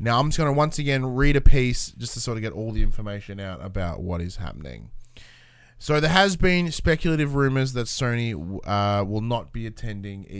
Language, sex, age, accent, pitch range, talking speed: English, male, 20-39, Australian, 100-140 Hz, 215 wpm